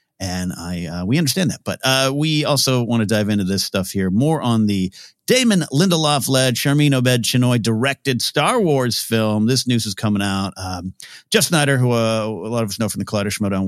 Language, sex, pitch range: English, male, 100-145 Hz